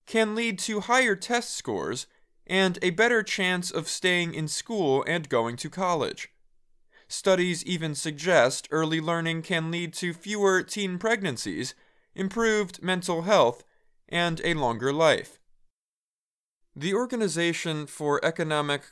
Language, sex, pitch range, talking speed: English, male, 155-195 Hz, 125 wpm